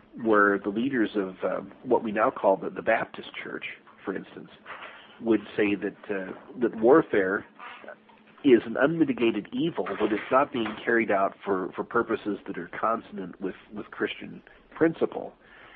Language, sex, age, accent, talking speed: English, male, 50-69, American, 155 wpm